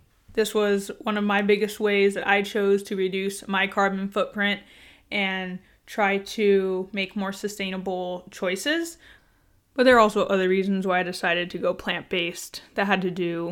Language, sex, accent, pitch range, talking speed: English, female, American, 180-205 Hz, 170 wpm